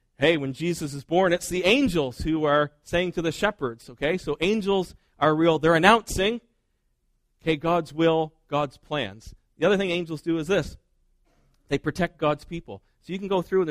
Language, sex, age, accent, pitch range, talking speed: English, male, 40-59, American, 130-175 Hz, 190 wpm